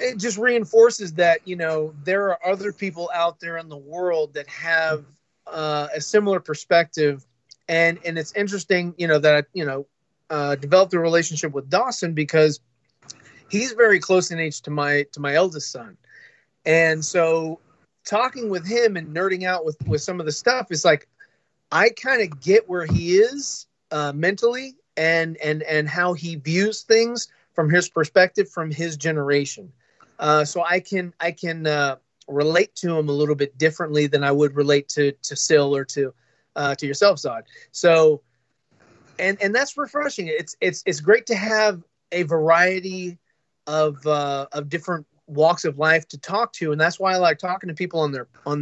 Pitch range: 150-190 Hz